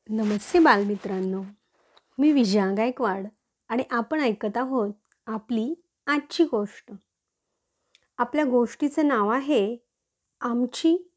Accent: native